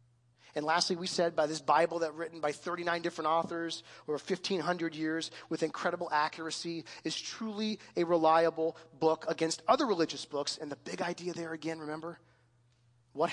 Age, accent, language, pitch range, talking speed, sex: 30-49, American, English, 130-170 Hz, 160 wpm, male